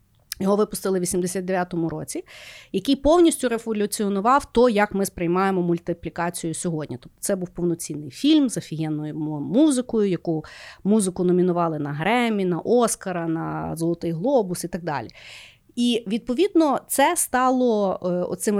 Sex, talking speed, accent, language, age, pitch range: female, 130 wpm, native, Ukrainian, 30-49, 180-240 Hz